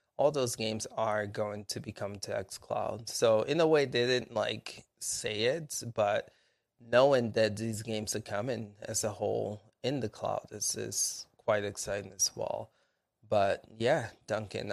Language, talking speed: English, 165 wpm